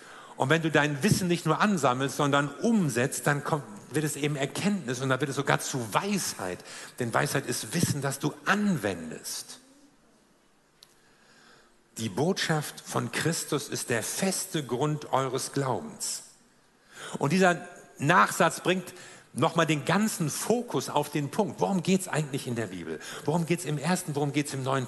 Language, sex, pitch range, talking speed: German, male, 135-170 Hz, 160 wpm